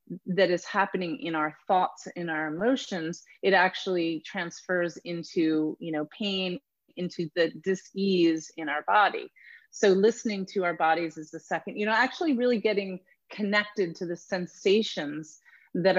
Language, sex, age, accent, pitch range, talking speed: English, female, 30-49, American, 165-200 Hz, 150 wpm